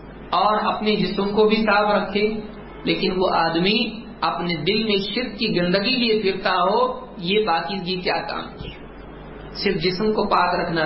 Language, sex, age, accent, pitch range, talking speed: English, male, 50-69, Indian, 185-220 Hz, 165 wpm